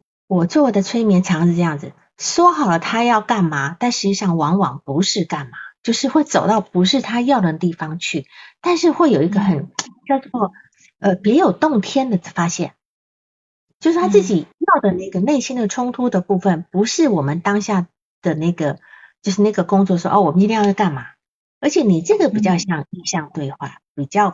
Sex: female